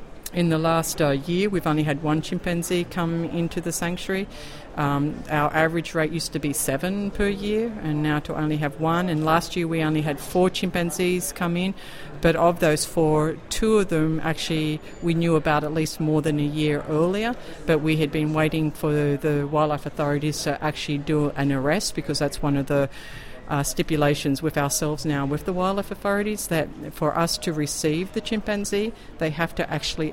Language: English